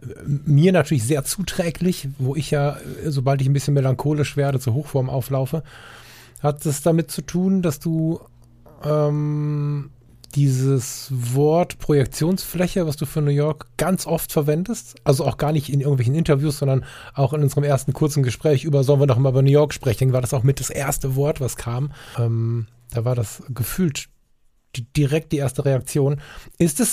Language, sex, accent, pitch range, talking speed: German, male, German, 135-160 Hz, 175 wpm